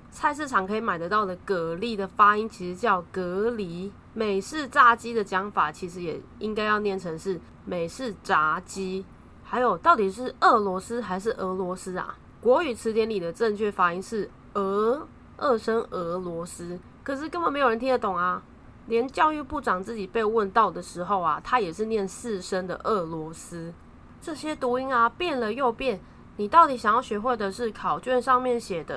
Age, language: 20-39, English